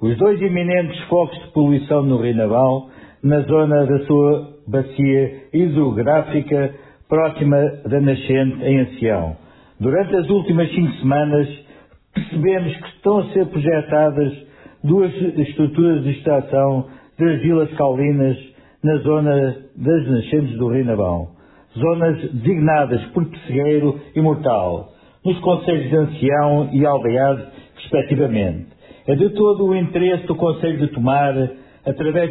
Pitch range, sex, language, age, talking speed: 135-165 Hz, male, Portuguese, 60-79, 125 wpm